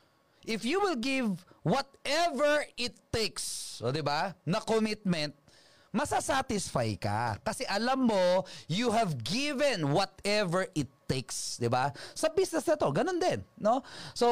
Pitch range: 140-225 Hz